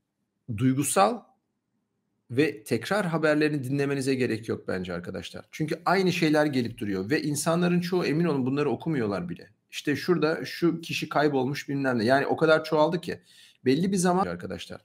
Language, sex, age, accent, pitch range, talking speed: Turkish, male, 40-59, native, 130-170 Hz, 155 wpm